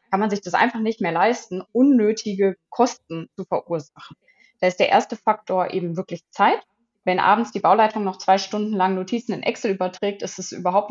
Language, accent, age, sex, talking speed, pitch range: German, German, 20-39, female, 195 wpm, 180-215 Hz